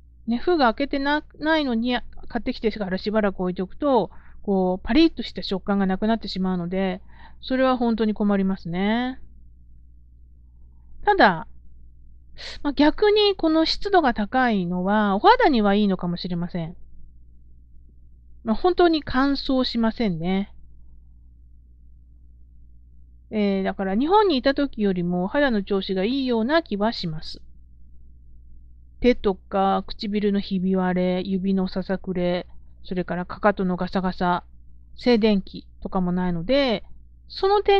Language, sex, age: Japanese, female, 40-59